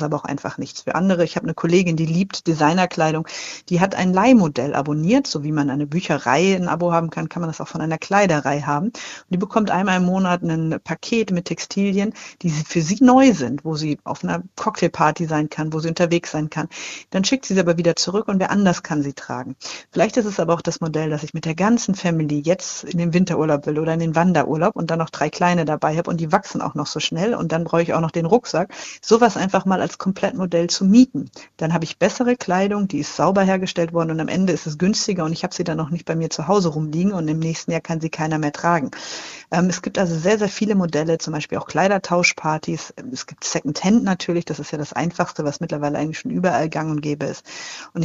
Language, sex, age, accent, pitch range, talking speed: German, female, 50-69, German, 160-190 Hz, 245 wpm